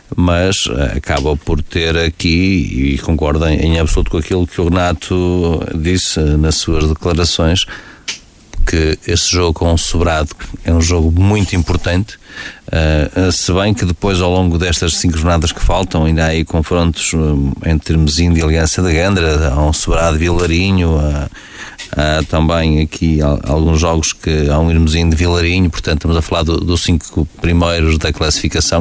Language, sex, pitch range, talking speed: Portuguese, male, 80-90 Hz, 175 wpm